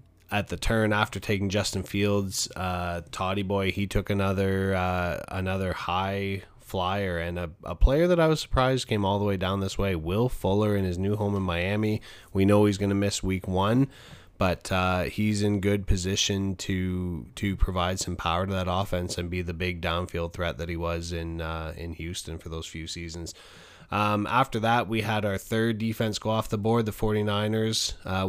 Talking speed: 200 wpm